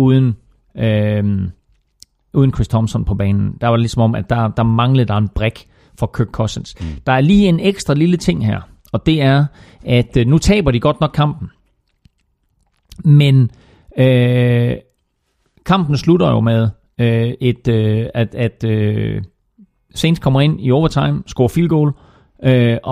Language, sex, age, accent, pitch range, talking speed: Danish, male, 40-59, native, 115-150 Hz, 155 wpm